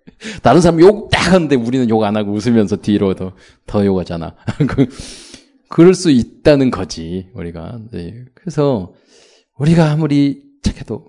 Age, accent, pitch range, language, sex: 20-39, native, 110-160 Hz, Korean, male